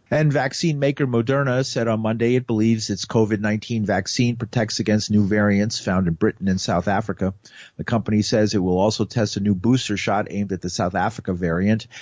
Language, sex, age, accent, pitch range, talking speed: English, male, 50-69, American, 95-115 Hz, 195 wpm